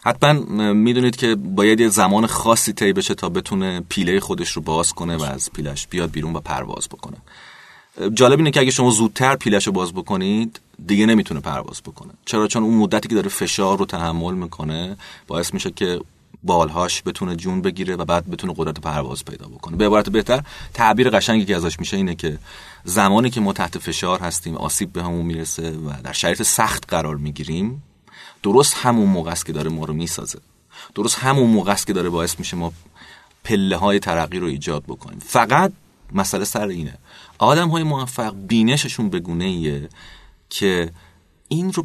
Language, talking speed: Persian, 175 wpm